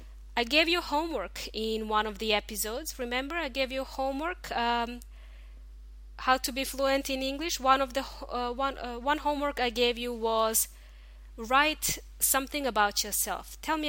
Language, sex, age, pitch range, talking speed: English, female, 20-39, 200-265 Hz, 170 wpm